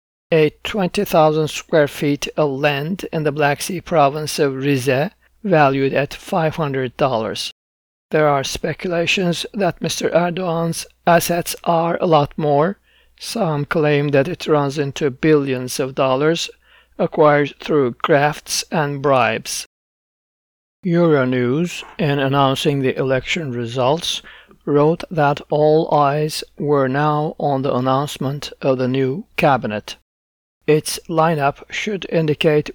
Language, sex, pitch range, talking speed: English, male, 135-165 Hz, 125 wpm